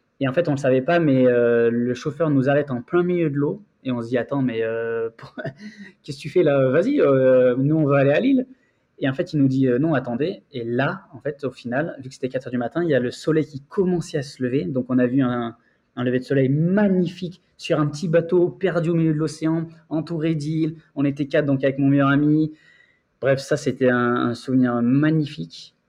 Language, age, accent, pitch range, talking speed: French, 20-39, French, 125-160 Hz, 255 wpm